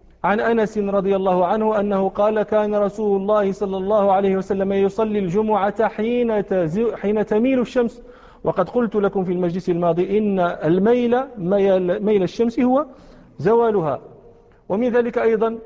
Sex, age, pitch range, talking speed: male, 40-59, 195-230 Hz, 130 wpm